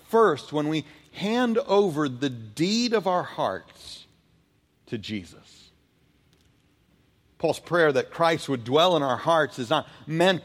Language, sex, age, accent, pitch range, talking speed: English, male, 40-59, American, 125-155 Hz, 140 wpm